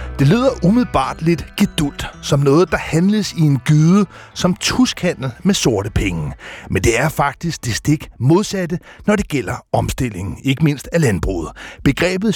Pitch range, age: 130-185 Hz, 60-79